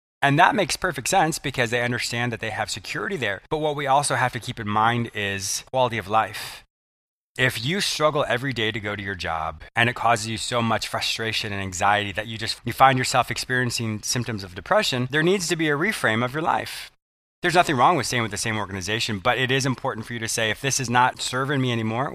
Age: 20-39